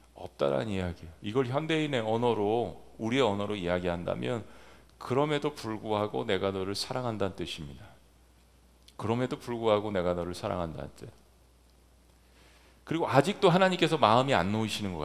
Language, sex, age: Korean, male, 40-59